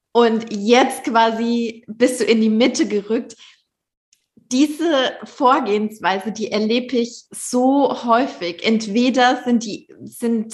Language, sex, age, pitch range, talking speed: German, female, 20-39, 205-235 Hz, 115 wpm